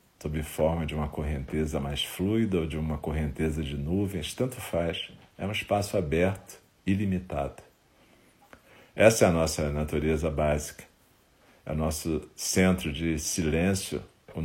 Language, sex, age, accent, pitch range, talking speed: Portuguese, male, 50-69, Brazilian, 80-95 Hz, 135 wpm